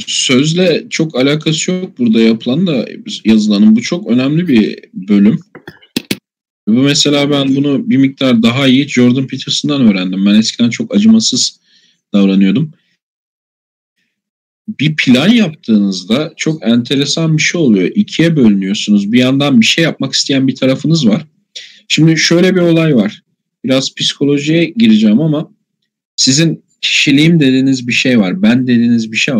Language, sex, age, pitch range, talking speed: Turkish, male, 40-59, 120-180 Hz, 135 wpm